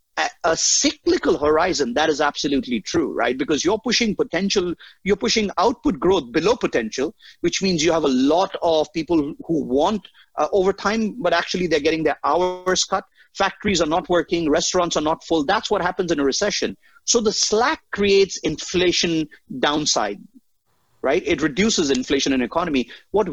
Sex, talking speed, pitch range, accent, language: male, 165 wpm, 155-225 Hz, Indian, English